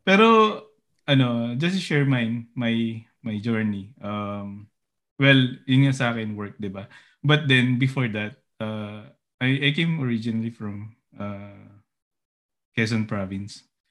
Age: 20-39